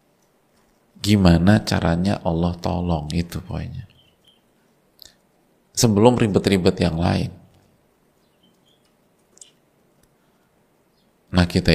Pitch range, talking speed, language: 85-100 Hz, 60 wpm, Indonesian